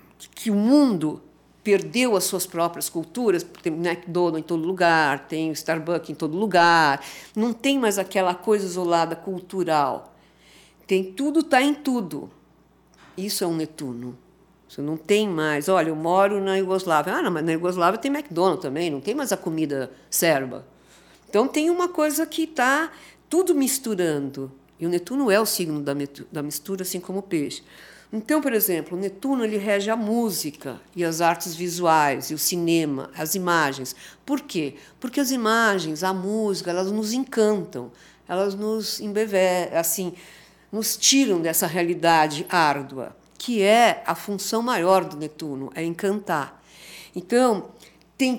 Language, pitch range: Portuguese, 160-215 Hz